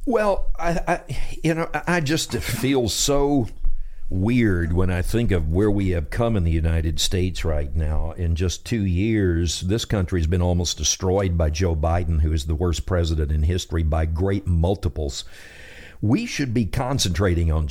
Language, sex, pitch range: English, male, 85-110 Hz